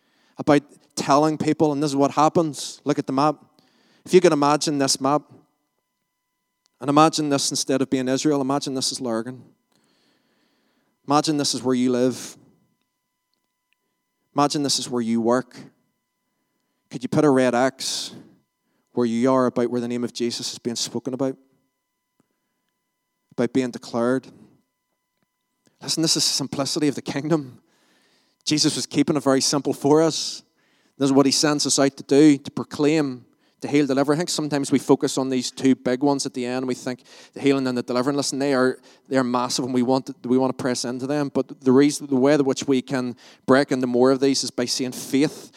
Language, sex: English, male